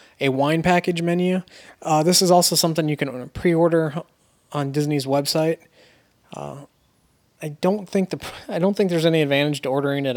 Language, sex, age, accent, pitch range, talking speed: English, male, 20-39, American, 130-155 Hz, 170 wpm